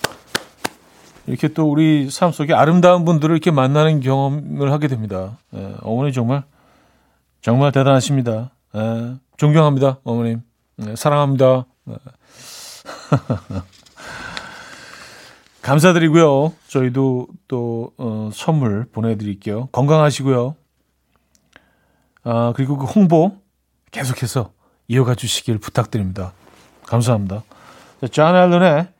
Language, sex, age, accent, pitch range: Korean, male, 40-59, native, 120-155 Hz